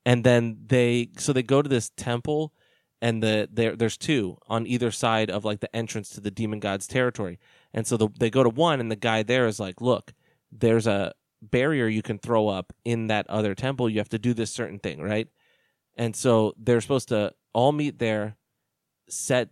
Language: English